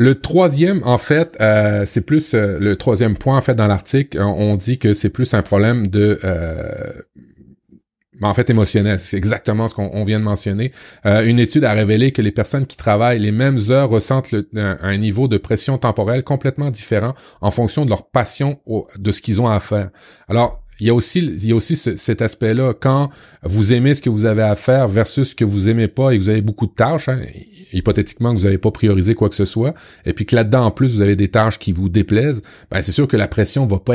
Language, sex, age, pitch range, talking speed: French, male, 30-49, 105-125 Hz, 240 wpm